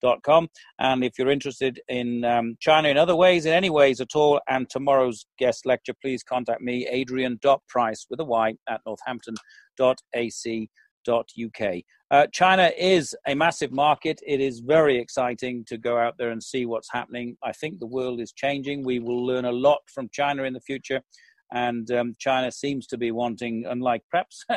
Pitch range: 120-145 Hz